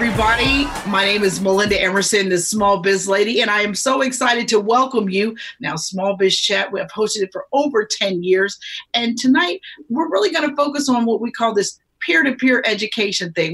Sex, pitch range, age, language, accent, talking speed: female, 185-240 Hz, 40-59, English, American, 200 wpm